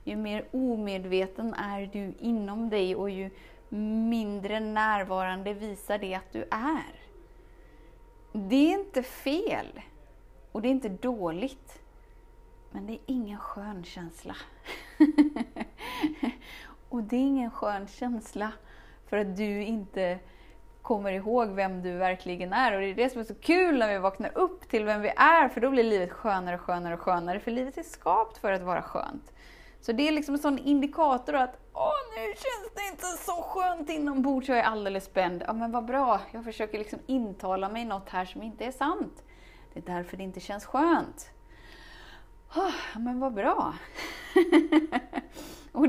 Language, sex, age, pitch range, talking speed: Swedish, female, 20-39, 200-275 Hz, 170 wpm